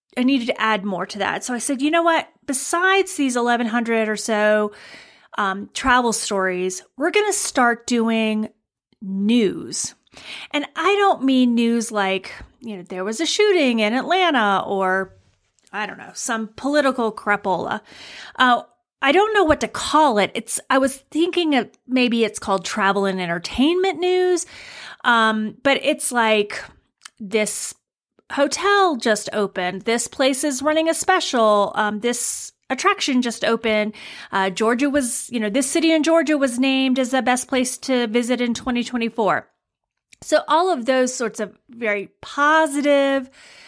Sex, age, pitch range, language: female, 30-49, 215-280 Hz, English